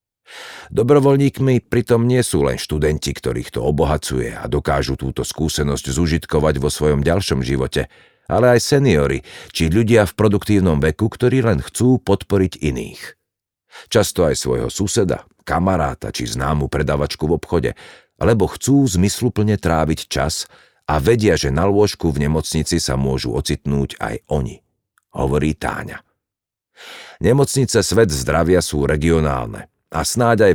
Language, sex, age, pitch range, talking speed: Slovak, male, 50-69, 75-95 Hz, 135 wpm